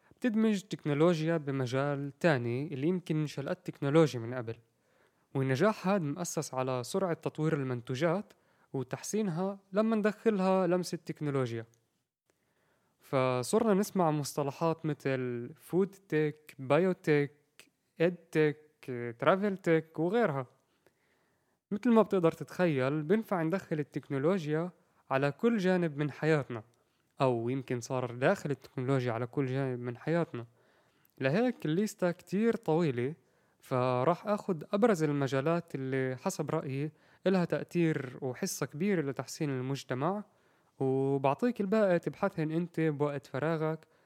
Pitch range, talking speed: 130-180 Hz, 110 wpm